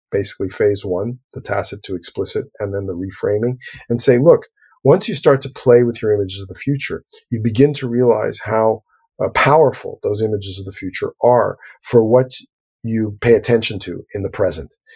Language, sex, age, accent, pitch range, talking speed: English, male, 40-59, American, 105-130 Hz, 190 wpm